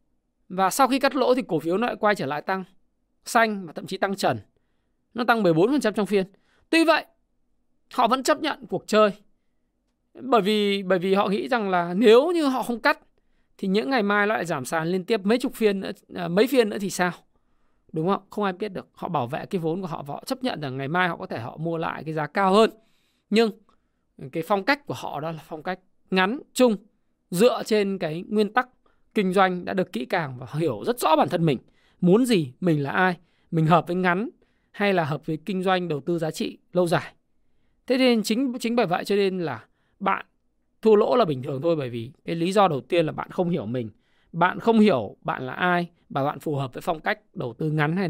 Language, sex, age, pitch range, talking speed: Vietnamese, male, 20-39, 165-230 Hz, 240 wpm